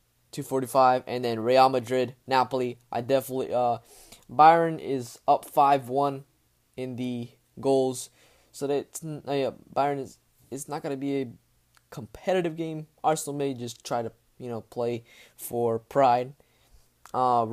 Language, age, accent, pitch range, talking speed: English, 20-39, American, 120-140 Hz, 140 wpm